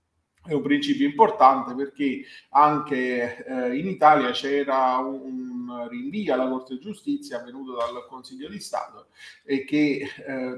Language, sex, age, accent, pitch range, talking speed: Italian, male, 40-59, native, 130-200 Hz, 135 wpm